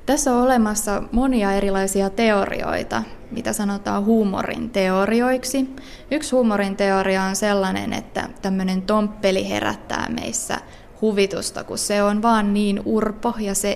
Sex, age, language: female, 20-39, Finnish